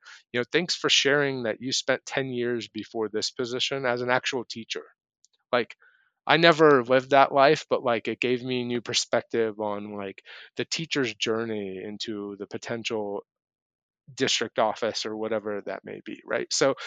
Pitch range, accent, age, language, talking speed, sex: 110-130 Hz, American, 30-49, English, 170 wpm, male